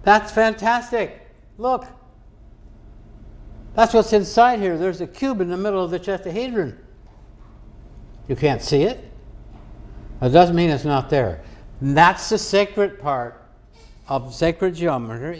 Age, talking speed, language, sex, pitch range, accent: 60-79, 130 wpm, English, male, 110-170 Hz, American